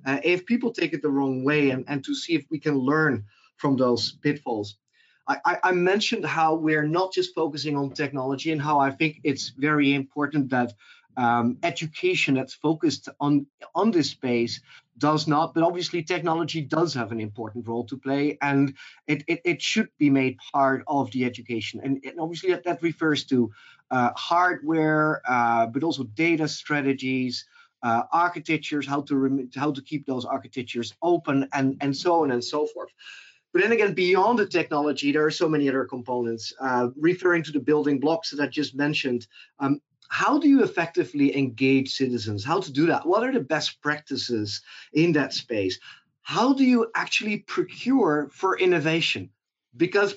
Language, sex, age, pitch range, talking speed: English, male, 30-49, 135-165 Hz, 180 wpm